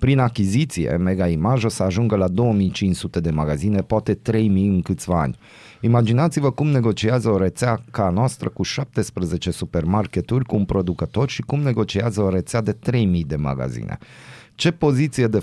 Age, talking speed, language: 30-49, 155 wpm, Romanian